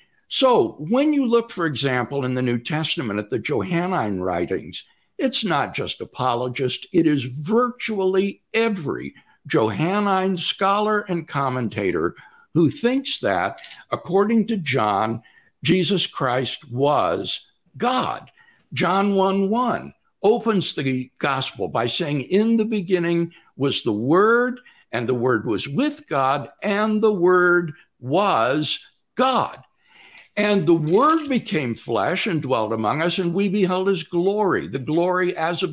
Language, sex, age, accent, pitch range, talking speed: English, male, 60-79, American, 150-220 Hz, 130 wpm